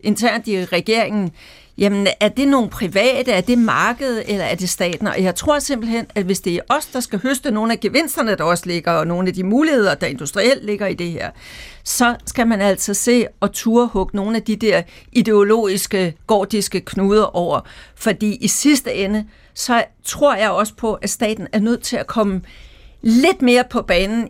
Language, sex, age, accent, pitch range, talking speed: Danish, female, 60-79, native, 195-235 Hz, 195 wpm